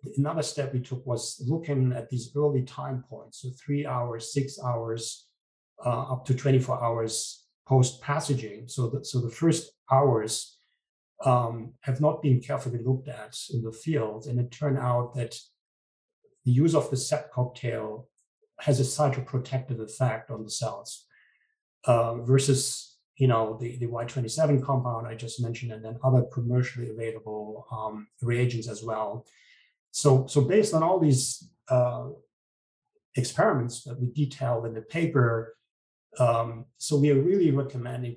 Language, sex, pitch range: English, male, 115-140 Hz